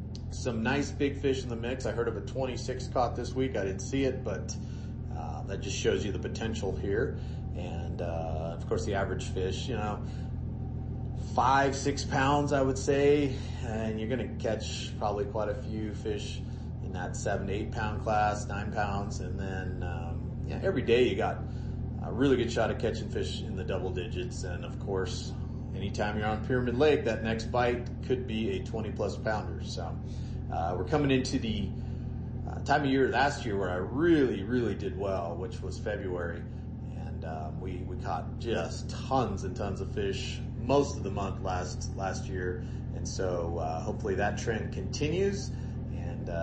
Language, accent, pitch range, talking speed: English, American, 100-125 Hz, 190 wpm